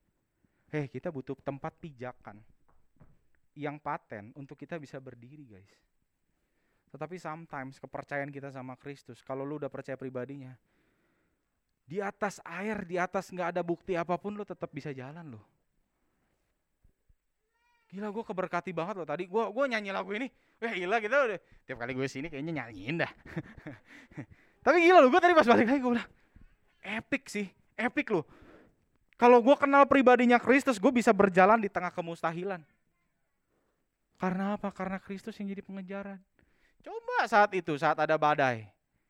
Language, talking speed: Indonesian, 145 wpm